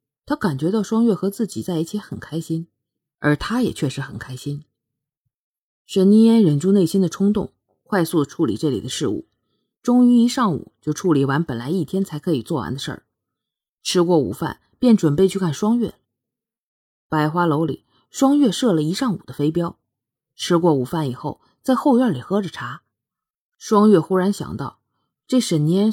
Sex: female